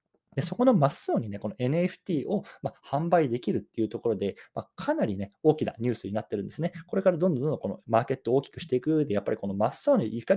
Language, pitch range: Japanese, 110-175 Hz